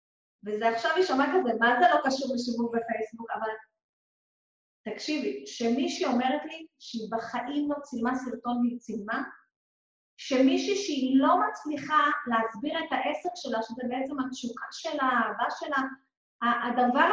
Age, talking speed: 30-49, 135 wpm